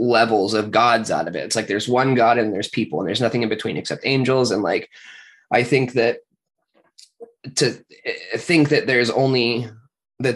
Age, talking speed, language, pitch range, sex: 20-39, 185 wpm, English, 110-125 Hz, male